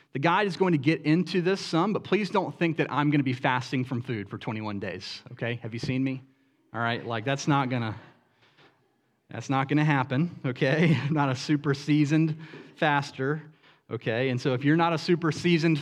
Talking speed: 205 wpm